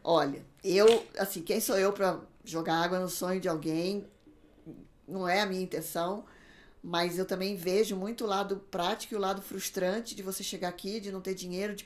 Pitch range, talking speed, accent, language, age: 175-210 Hz, 195 wpm, Brazilian, Portuguese, 20-39